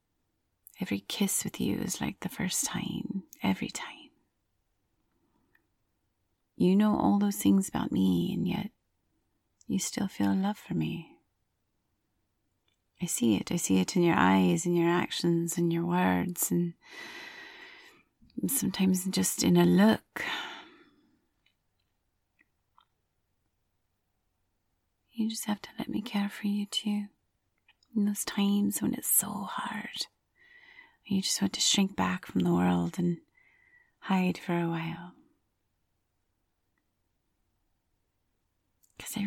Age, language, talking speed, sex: 30-49, English, 120 wpm, female